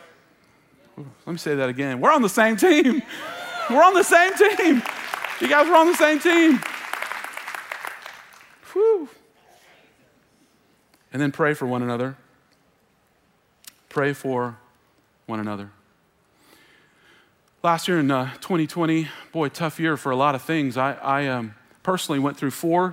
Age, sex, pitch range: 40-59, male, 130-165 Hz